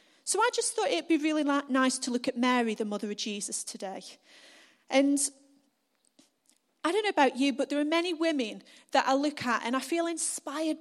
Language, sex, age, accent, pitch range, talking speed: English, female, 30-49, British, 245-310 Hz, 200 wpm